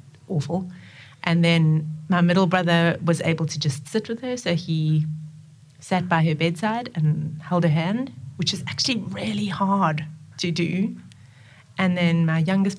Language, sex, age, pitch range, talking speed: English, female, 30-49, 150-180 Hz, 160 wpm